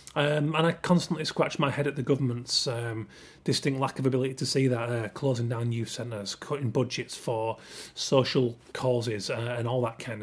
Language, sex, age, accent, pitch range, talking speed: English, male, 30-49, British, 125-150 Hz, 195 wpm